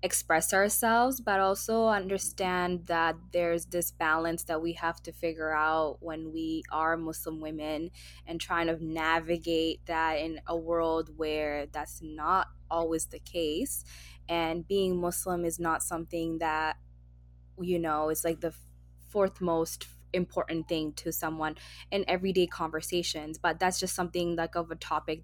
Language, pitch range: English, 160-180 Hz